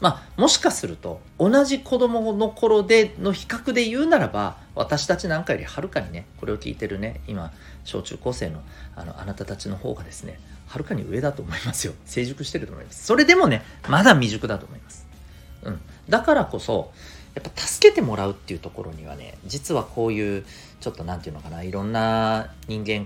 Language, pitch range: Japanese, 80-125 Hz